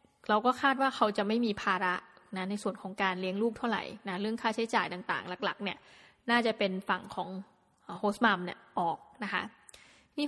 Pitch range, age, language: 200-240 Hz, 20-39, Thai